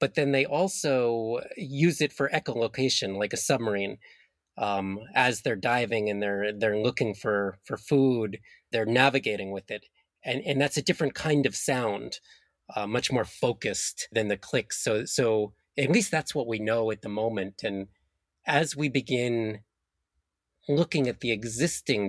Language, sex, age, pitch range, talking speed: English, male, 30-49, 100-135 Hz, 165 wpm